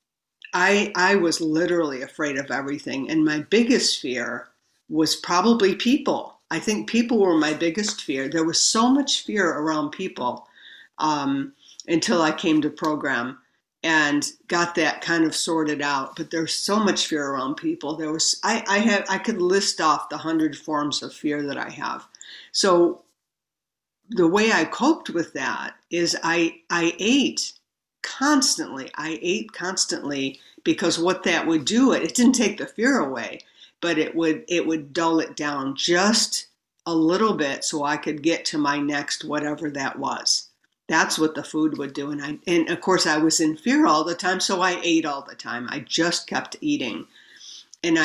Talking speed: 180 wpm